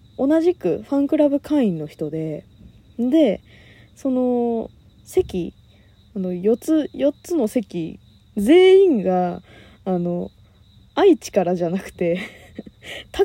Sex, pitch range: female, 170-280 Hz